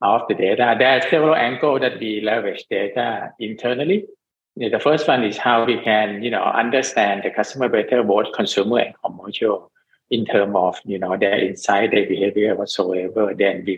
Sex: male